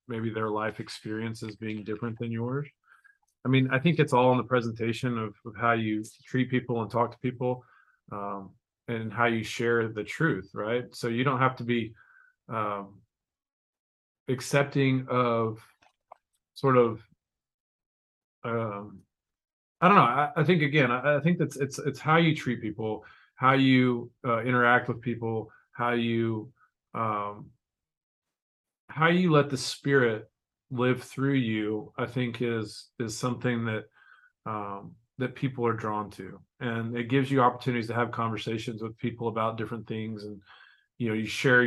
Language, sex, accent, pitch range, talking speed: English, male, American, 110-125 Hz, 160 wpm